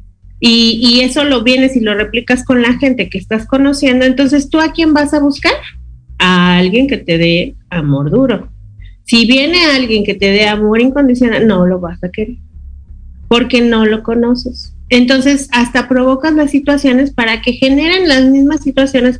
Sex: female